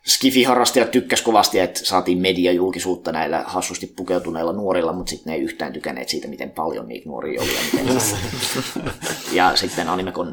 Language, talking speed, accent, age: Finnish, 155 wpm, native, 20-39